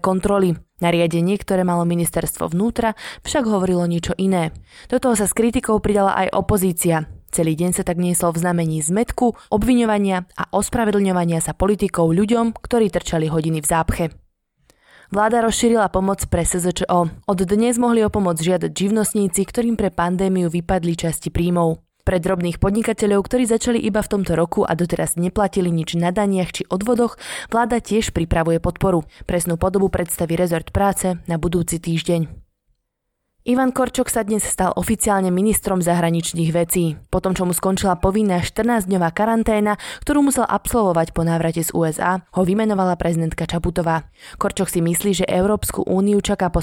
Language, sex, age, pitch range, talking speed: Slovak, female, 20-39, 170-210 Hz, 150 wpm